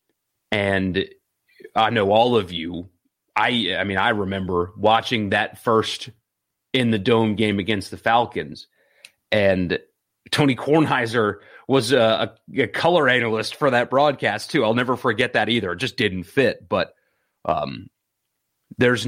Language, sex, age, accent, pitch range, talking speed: English, male, 30-49, American, 110-145 Hz, 140 wpm